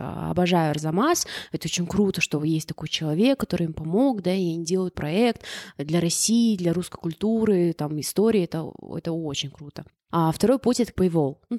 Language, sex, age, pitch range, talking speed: Russian, female, 20-39, 165-200 Hz, 175 wpm